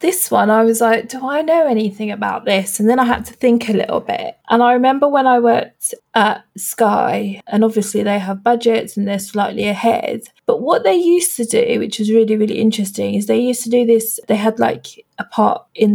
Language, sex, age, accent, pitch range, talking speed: English, female, 20-39, British, 205-240 Hz, 225 wpm